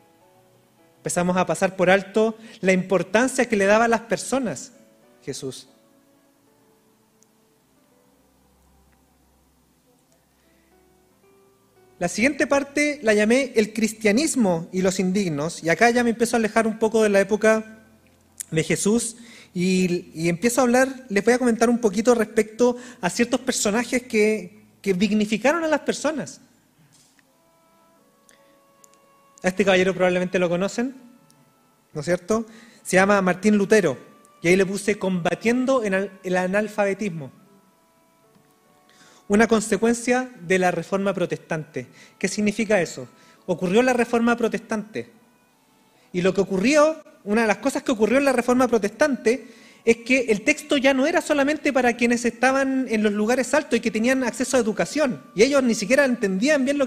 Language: Spanish